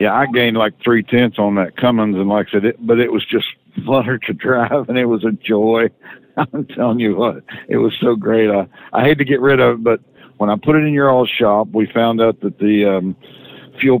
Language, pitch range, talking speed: English, 105-120 Hz, 250 wpm